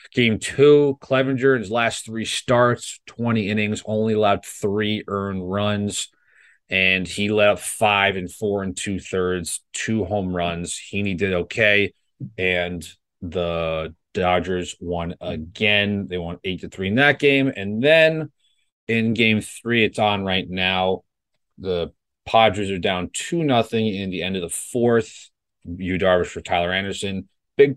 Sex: male